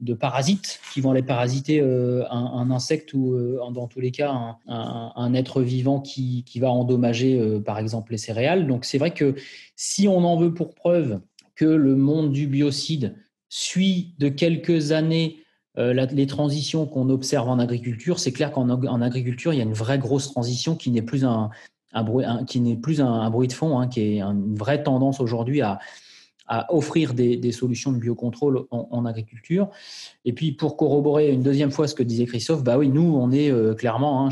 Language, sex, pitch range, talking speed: French, male, 120-145 Hz, 210 wpm